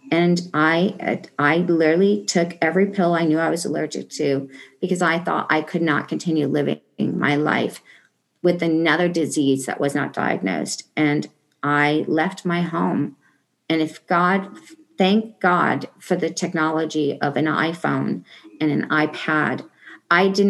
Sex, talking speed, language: female, 150 wpm, English